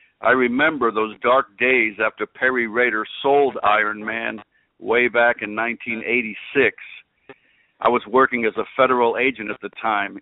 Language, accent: English, American